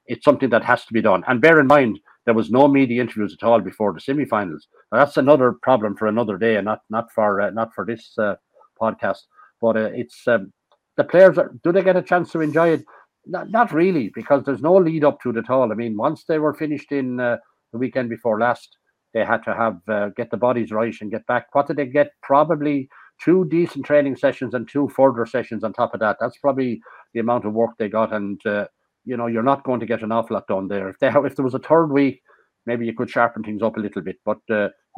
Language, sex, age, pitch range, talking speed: English, male, 60-79, 110-140 Hz, 250 wpm